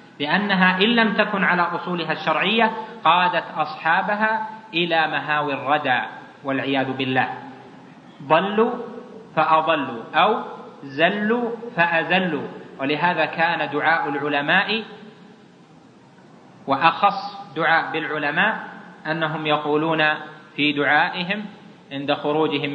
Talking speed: 85 wpm